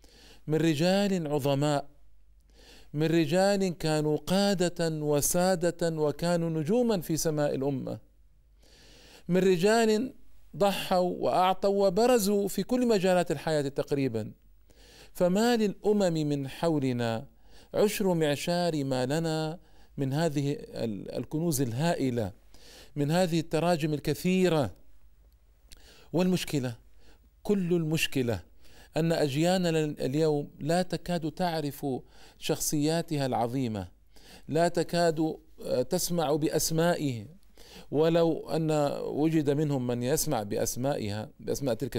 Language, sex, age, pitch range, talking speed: Arabic, male, 50-69, 140-175 Hz, 90 wpm